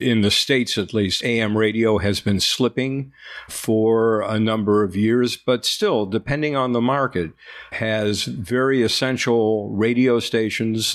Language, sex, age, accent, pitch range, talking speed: English, male, 50-69, American, 105-120 Hz, 140 wpm